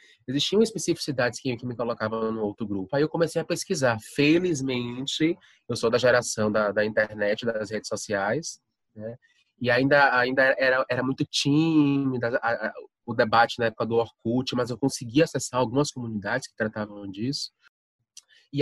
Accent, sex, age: Brazilian, male, 20-39